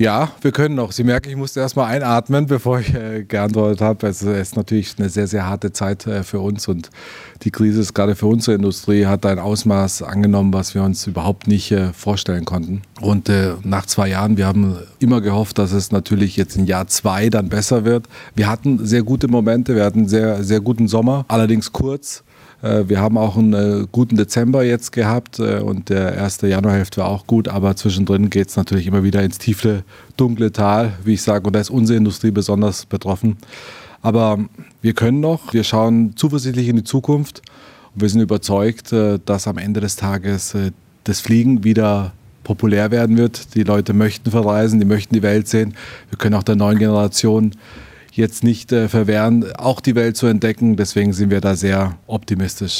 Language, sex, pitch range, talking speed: German, male, 100-115 Hz, 190 wpm